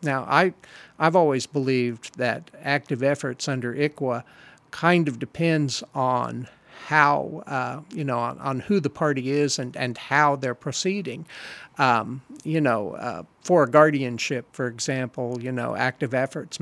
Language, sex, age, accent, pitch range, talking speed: English, male, 50-69, American, 125-155 Hz, 150 wpm